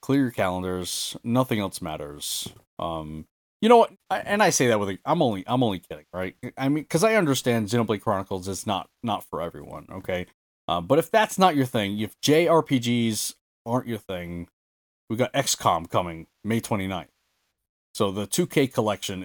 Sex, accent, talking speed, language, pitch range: male, American, 180 wpm, English, 95-135 Hz